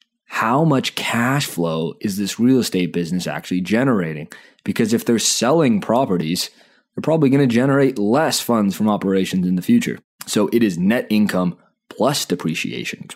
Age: 20-39